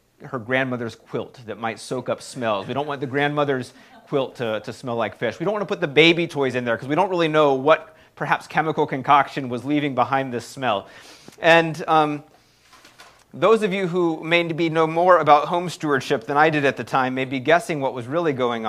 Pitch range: 130-165 Hz